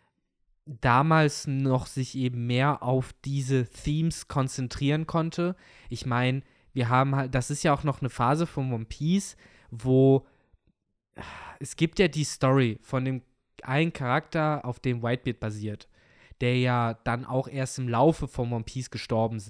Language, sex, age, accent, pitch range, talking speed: German, male, 20-39, German, 120-145 Hz, 155 wpm